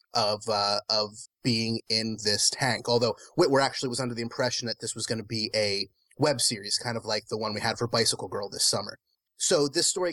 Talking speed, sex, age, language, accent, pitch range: 225 wpm, male, 30-49, English, American, 115-140 Hz